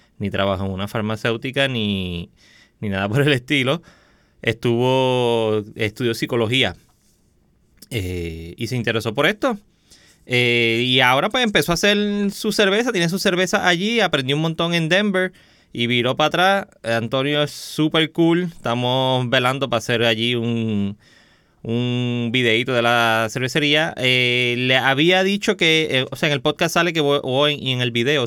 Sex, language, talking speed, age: male, Spanish, 160 wpm, 20-39